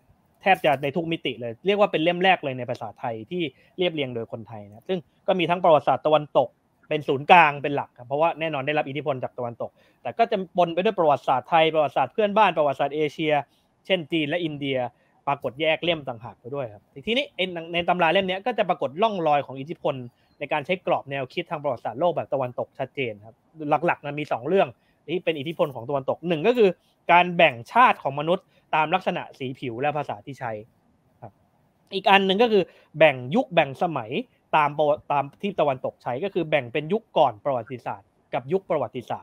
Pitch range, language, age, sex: 140-180 Hz, Thai, 20-39, male